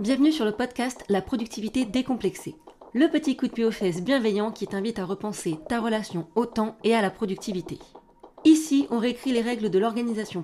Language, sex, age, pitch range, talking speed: French, female, 30-49, 195-240 Hz, 195 wpm